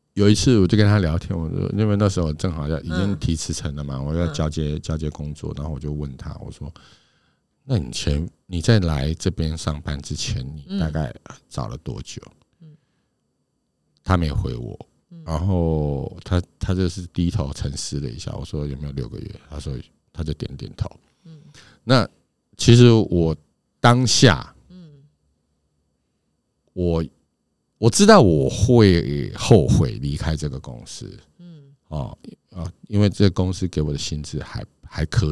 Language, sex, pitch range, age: Chinese, male, 75-105 Hz, 50-69